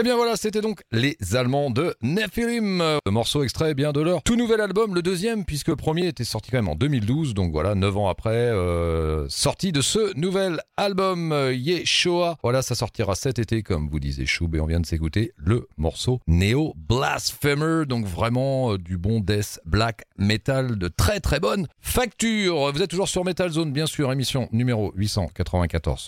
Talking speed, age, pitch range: 195 wpm, 40-59, 90-150 Hz